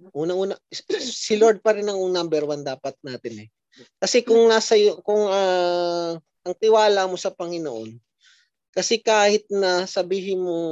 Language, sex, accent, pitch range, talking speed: Filipino, male, native, 135-195 Hz, 145 wpm